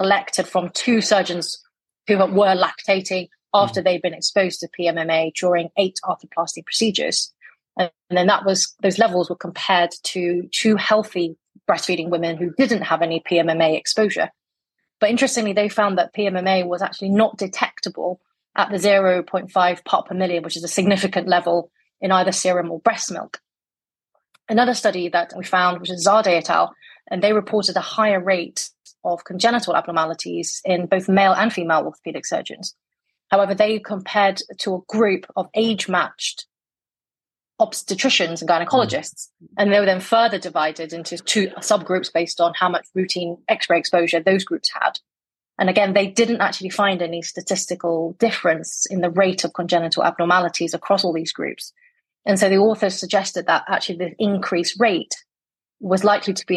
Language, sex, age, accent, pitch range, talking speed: English, female, 30-49, British, 175-205 Hz, 165 wpm